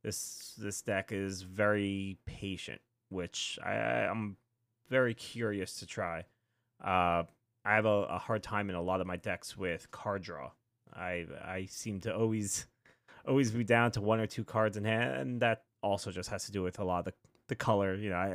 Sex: male